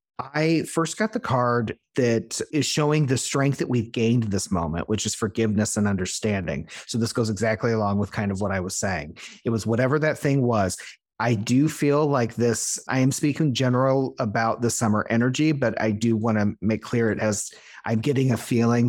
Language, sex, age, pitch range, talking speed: English, male, 30-49, 110-130 Hz, 205 wpm